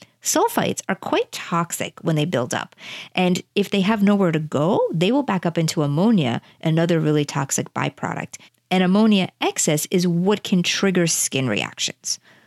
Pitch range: 160-200 Hz